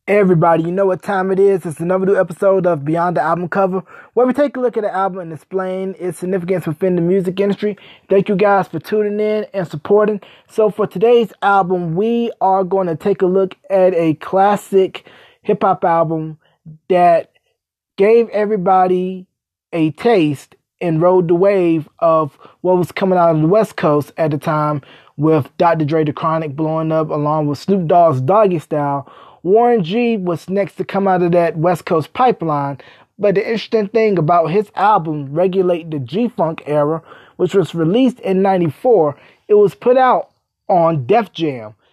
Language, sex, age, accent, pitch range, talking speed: English, male, 20-39, American, 160-205 Hz, 180 wpm